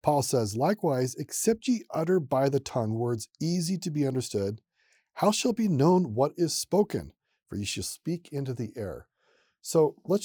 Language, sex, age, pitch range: English, male, 40-59, 125-175 Hz